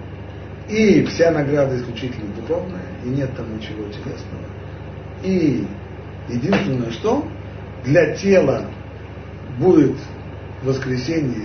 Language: Russian